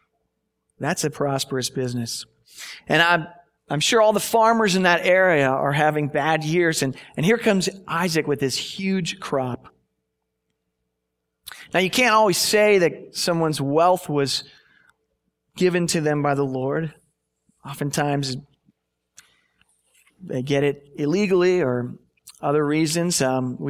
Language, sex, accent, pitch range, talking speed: English, male, American, 130-180 Hz, 130 wpm